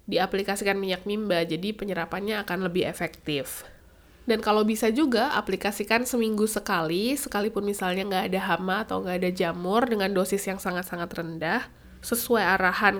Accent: native